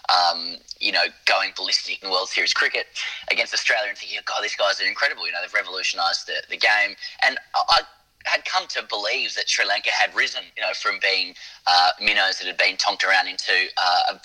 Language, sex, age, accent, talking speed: English, male, 30-49, Australian, 210 wpm